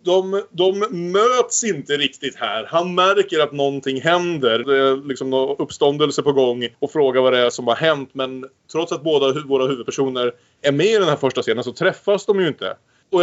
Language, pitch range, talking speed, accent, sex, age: Swedish, 130-160 Hz, 205 wpm, Norwegian, male, 20-39